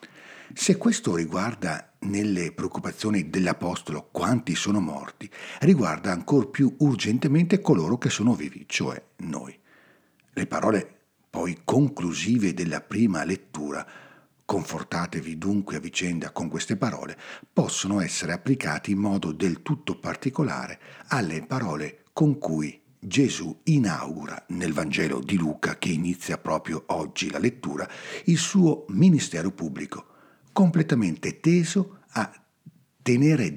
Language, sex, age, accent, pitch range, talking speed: Italian, male, 60-79, native, 90-150 Hz, 115 wpm